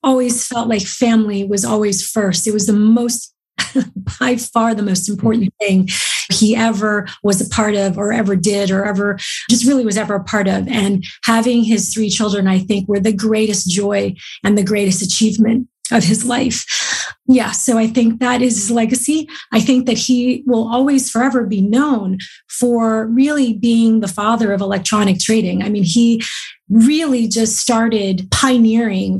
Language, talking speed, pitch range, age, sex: English, 175 wpm, 195-230 Hz, 30-49, female